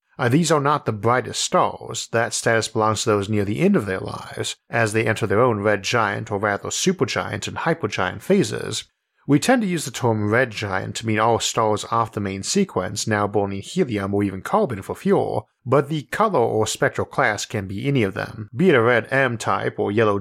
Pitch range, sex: 105-135 Hz, male